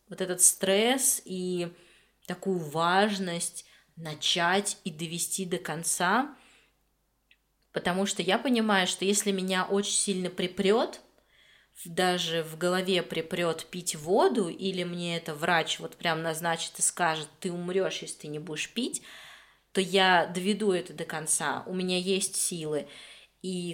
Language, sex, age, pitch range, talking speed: Russian, female, 20-39, 170-200 Hz, 135 wpm